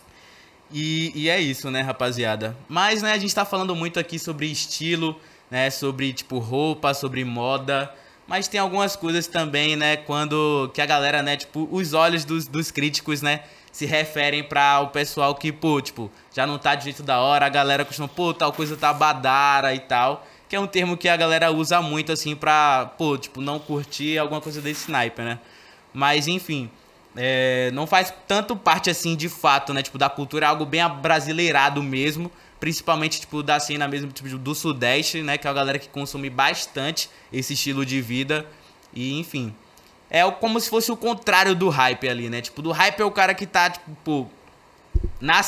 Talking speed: 195 wpm